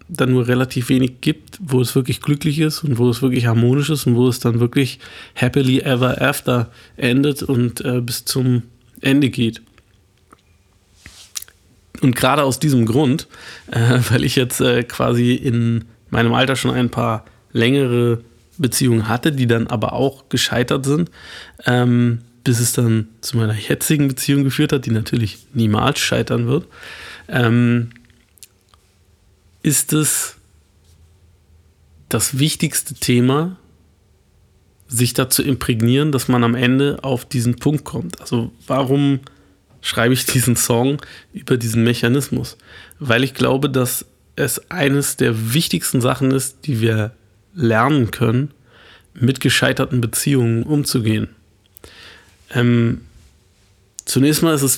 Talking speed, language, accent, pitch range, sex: 130 wpm, German, German, 115-135 Hz, male